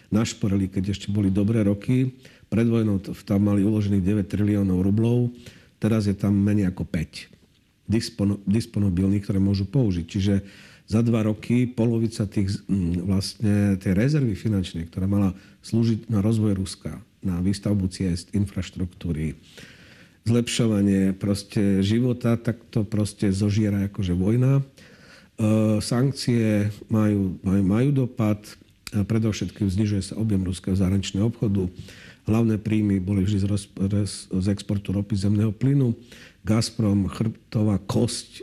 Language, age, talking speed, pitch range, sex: Slovak, 50-69, 125 wpm, 100-115 Hz, male